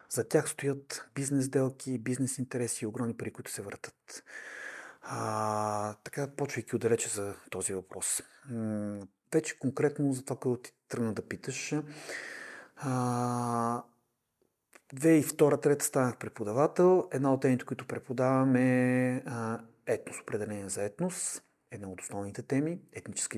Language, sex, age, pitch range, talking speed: Bulgarian, male, 40-59, 115-140 Hz, 135 wpm